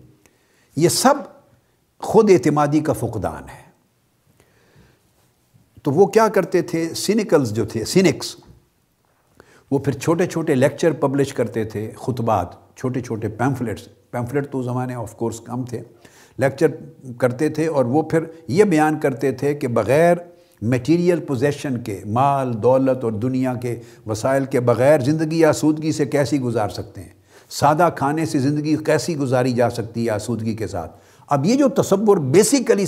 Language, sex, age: Urdu, male, 60-79